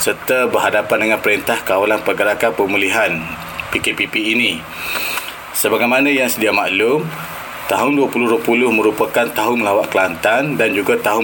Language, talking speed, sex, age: Malay, 115 wpm, male, 30-49